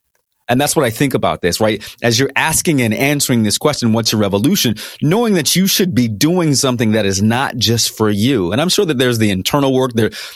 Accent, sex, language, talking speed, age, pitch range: American, male, English, 230 wpm, 30-49, 105-145 Hz